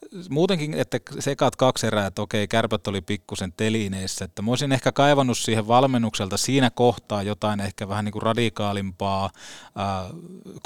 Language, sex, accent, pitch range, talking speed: Finnish, male, native, 100-120 Hz, 150 wpm